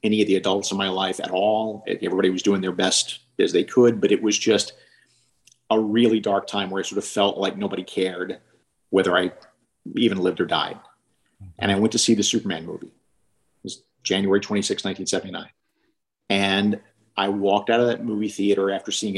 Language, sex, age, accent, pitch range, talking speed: English, male, 50-69, American, 95-115 Hz, 195 wpm